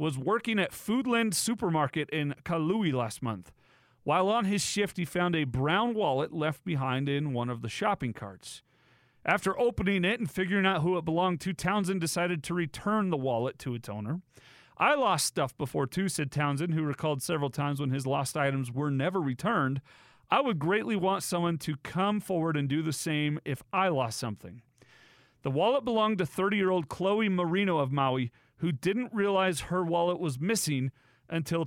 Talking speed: 180 wpm